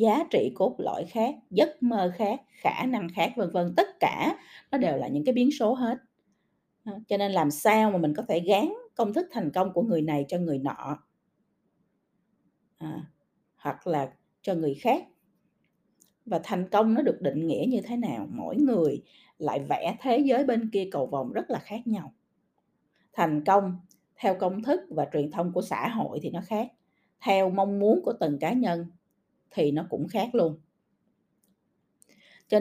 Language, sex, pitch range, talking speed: Vietnamese, female, 165-235 Hz, 180 wpm